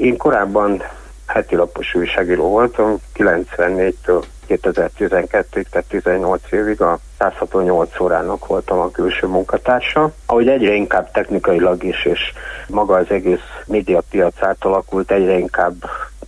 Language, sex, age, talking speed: Hungarian, male, 60-79, 110 wpm